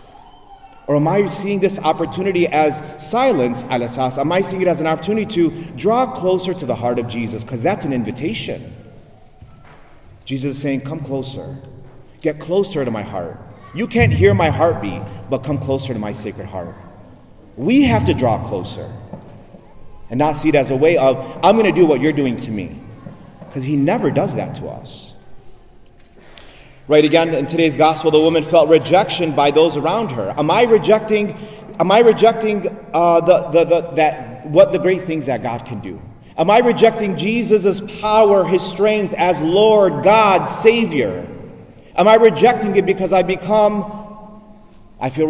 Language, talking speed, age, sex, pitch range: English, 175 wpm, 30-49, male, 130-195 Hz